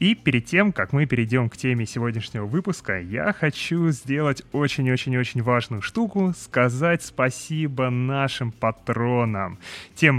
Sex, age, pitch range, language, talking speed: male, 20-39, 125-160 Hz, Russian, 125 wpm